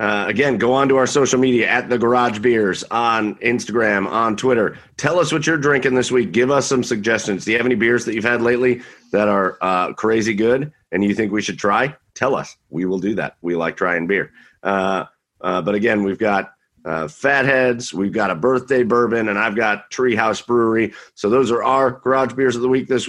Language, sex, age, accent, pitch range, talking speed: English, male, 40-59, American, 100-125 Hz, 225 wpm